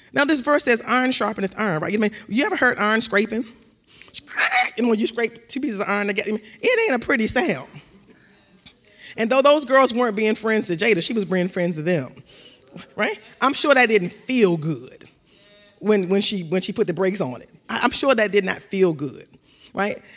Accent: American